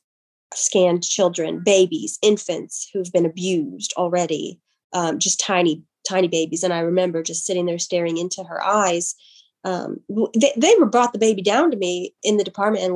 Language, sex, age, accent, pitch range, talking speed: English, female, 20-39, American, 180-210 Hz, 165 wpm